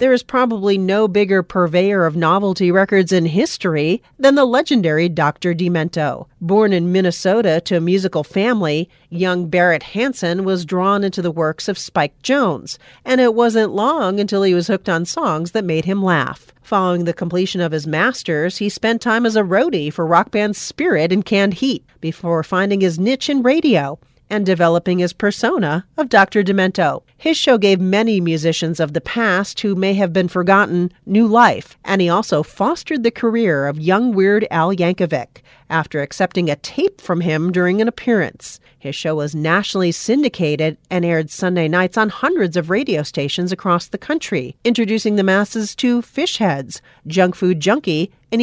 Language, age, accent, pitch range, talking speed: English, 40-59, American, 170-215 Hz, 175 wpm